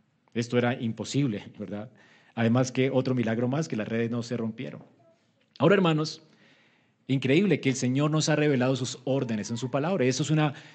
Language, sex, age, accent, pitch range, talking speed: Spanish, male, 30-49, Colombian, 125-155 Hz, 180 wpm